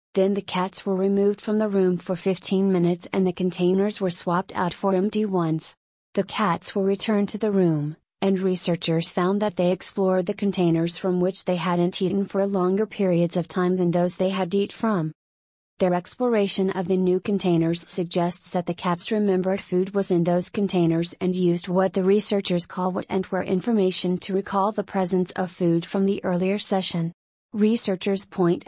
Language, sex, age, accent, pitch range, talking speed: English, female, 30-49, American, 180-195 Hz, 185 wpm